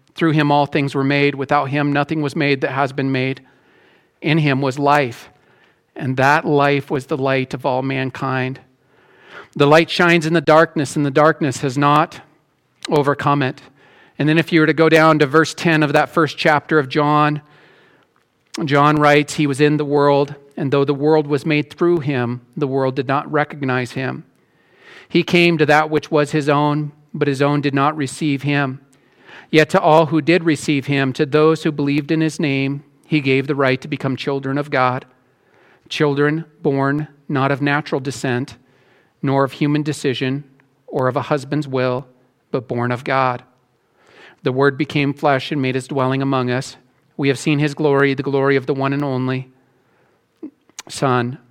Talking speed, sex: 185 wpm, male